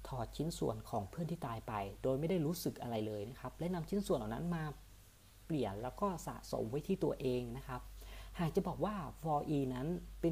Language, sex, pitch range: Thai, female, 110-160 Hz